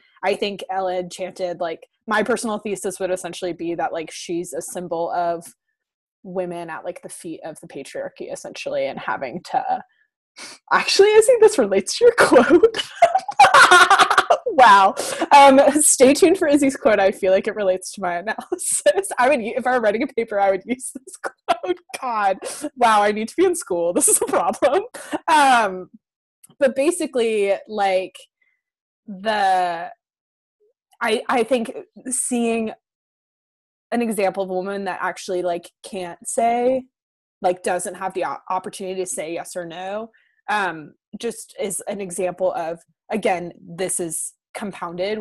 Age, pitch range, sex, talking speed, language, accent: 20-39, 180-275 Hz, female, 155 wpm, English, American